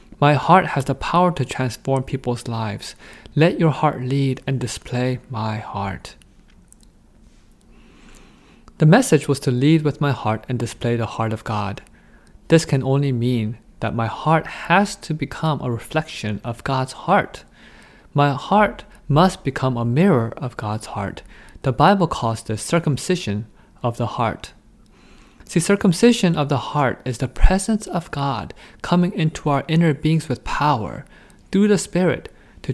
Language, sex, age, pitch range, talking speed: English, male, 20-39, 120-165 Hz, 155 wpm